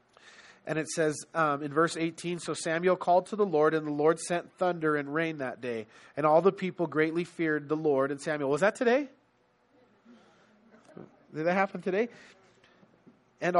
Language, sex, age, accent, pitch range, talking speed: English, male, 30-49, American, 155-195 Hz, 175 wpm